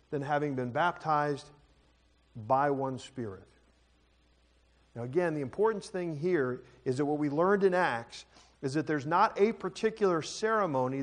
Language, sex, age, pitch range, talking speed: English, male, 40-59, 140-190 Hz, 145 wpm